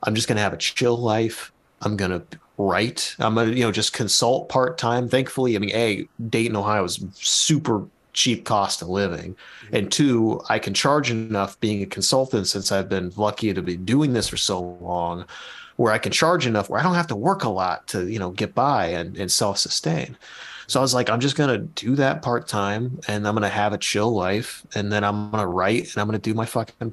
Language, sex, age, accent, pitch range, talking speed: English, male, 30-49, American, 100-125 Hz, 220 wpm